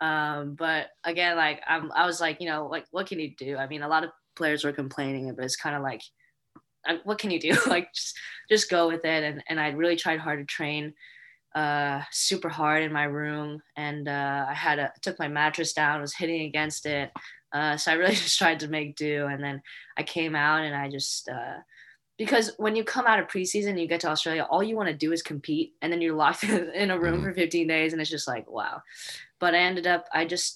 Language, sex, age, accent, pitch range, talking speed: English, female, 20-39, American, 150-170 Hz, 240 wpm